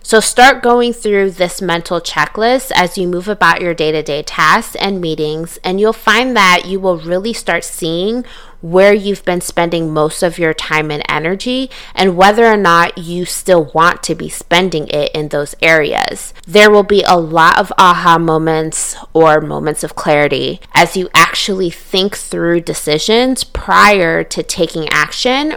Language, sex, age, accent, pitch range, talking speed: English, female, 20-39, American, 160-210 Hz, 165 wpm